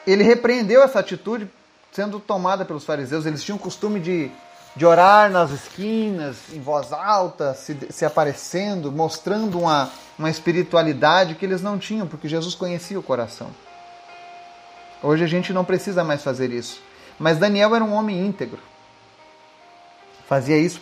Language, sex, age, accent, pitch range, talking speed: Portuguese, male, 30-49, Brazilian, 140-195 Hz, 150 wpm